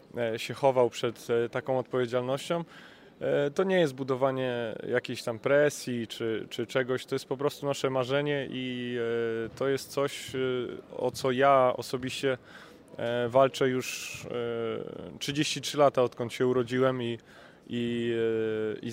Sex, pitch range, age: male, 120-130 Hz, 20-39